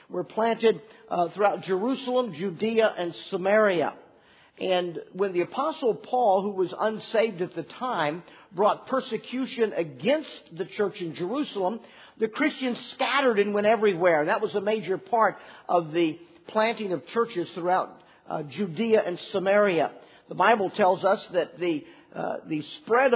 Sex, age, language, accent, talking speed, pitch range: male, 50-69, English, American, 145 wpm, 185-240 Hz